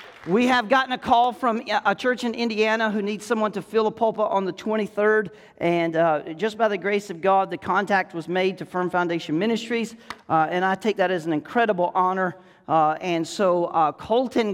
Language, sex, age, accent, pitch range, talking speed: English, male, 40-59, American, 165-235 Hz, 205 wpm